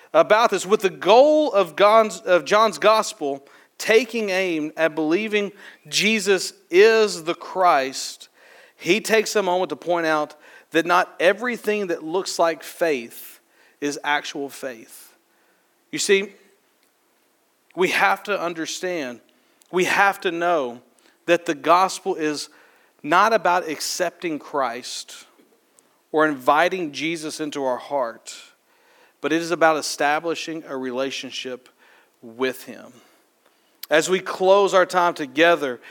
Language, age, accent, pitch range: English, 40-59, American, 155-200 Hz